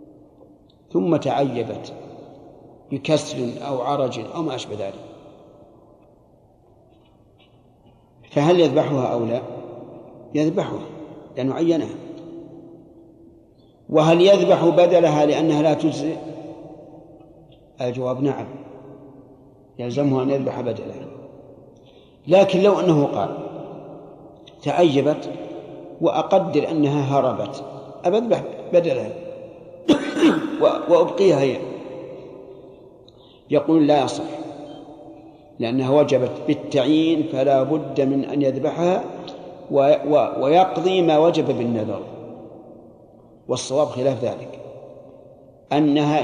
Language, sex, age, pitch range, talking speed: Arabic, male, 50-69, 135-165 Hz, 80 wpm